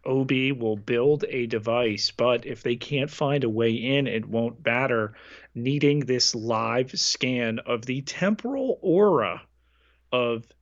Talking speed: 140 wpm